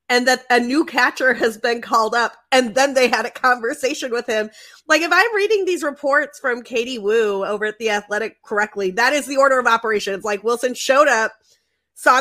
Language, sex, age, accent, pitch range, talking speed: English, female, 30-49, American, 195-260 Hz, 205 wpm